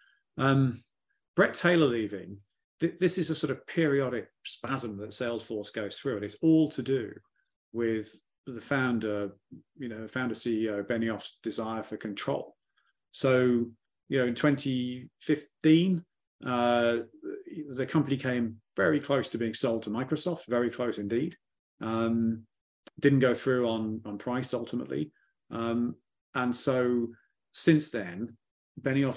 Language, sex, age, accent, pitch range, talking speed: English, male, 40-59, British, 110-140 Hz, 130 wpm